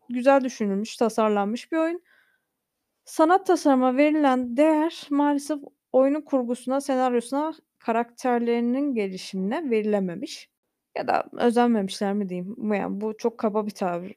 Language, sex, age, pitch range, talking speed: Turkish, female, 20-39, 215-275 Hz, 115 wpm